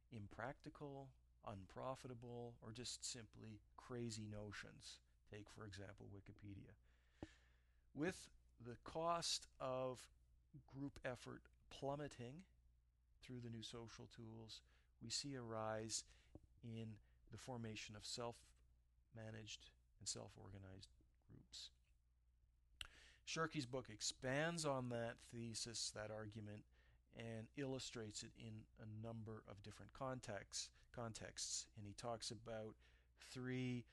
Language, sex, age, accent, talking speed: English, male, 40-59, American, 105 wpm